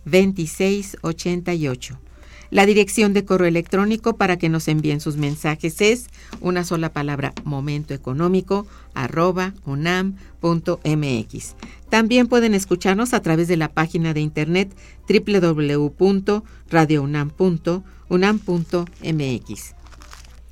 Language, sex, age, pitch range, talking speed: Spanish, female, 50-69, 155-190 Hz, 90 wpm